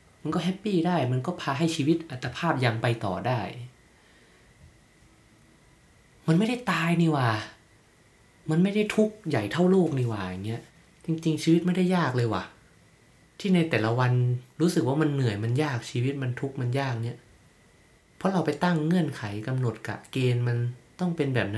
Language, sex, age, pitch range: Thai, male, 20-39, 120-160 Hz